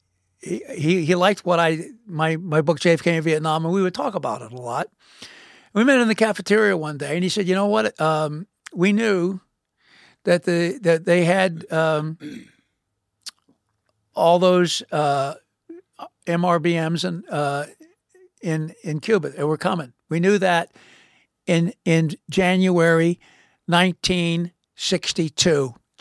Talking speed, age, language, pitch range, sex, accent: 150 wpm, 60-79, English, 160-205 Hz, male, American